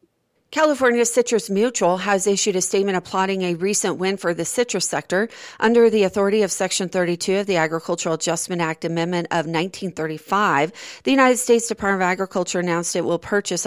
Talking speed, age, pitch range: 170 wpm, 40-59, 170-200 Hz